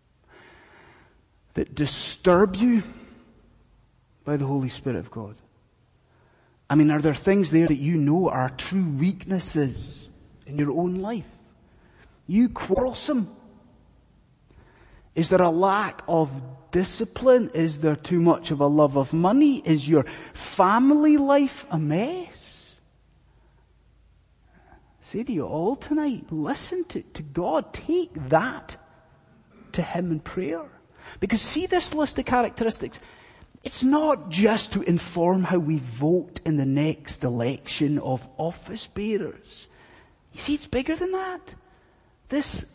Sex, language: male, English